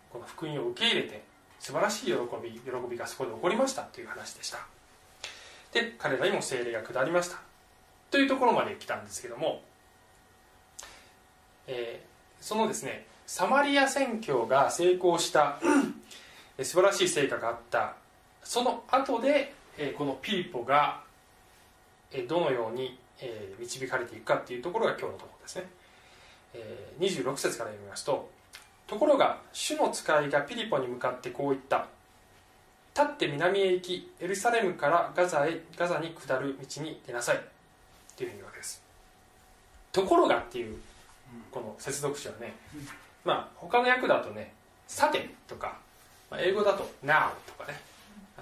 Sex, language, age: male, Japanese, 20-39